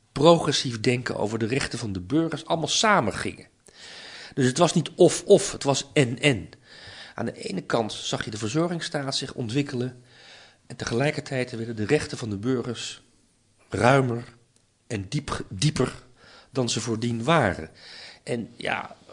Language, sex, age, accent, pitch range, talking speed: Dutch, male, 40-59, Dutch, 110-150 Hz, 145 wpm